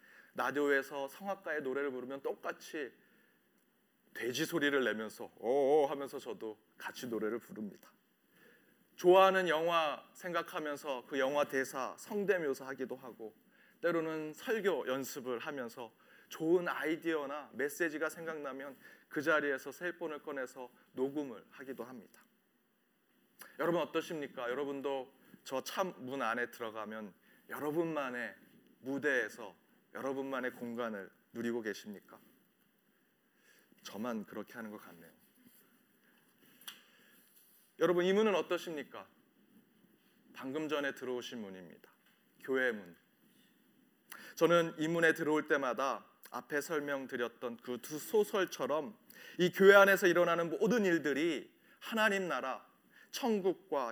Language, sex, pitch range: Korean, male, 135-195 Hz